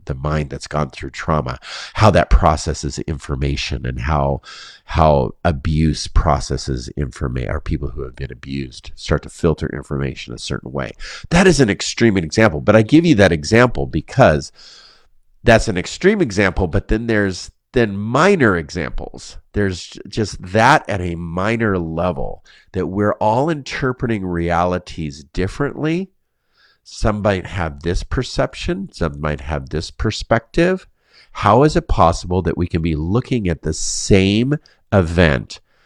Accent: American